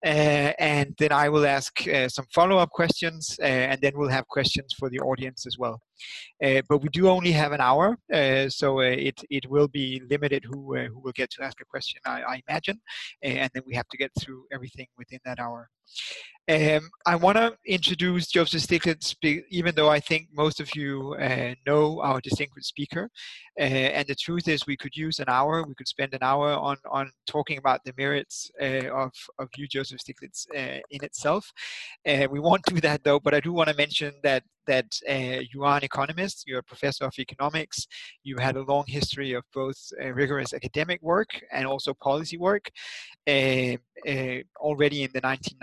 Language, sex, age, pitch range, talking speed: Danish, male, 30-49, 130-155 Hz, 205 wpm